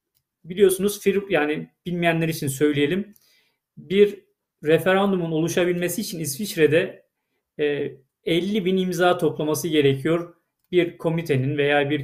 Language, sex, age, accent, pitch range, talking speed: Turkish, male, 40-59, native, 145-180 Hz, 95 wpm